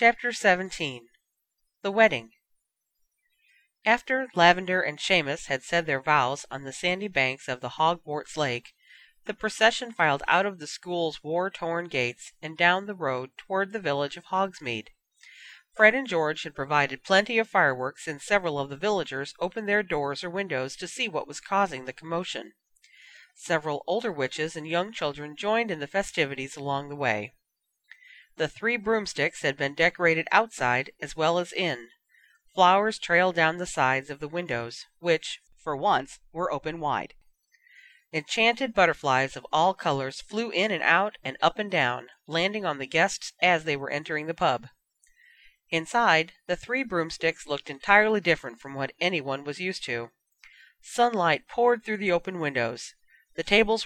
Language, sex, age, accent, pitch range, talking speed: English, female, 40-59, American, 145-205 Hz, 160 wpm